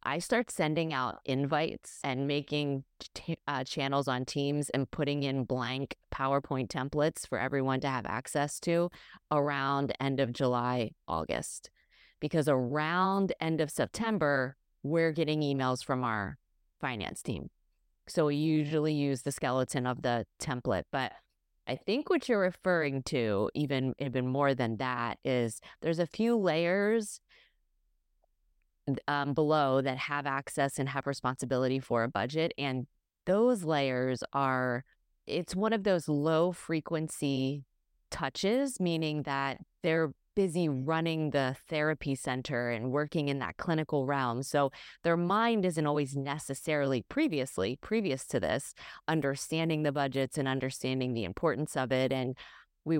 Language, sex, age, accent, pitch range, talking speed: English, female, 30-49, American, 130-160 Hz, 140 wpm